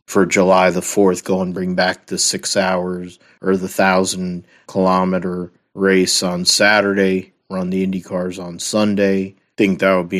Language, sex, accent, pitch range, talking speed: English, male, American, 90-100 Hz, 165 wpm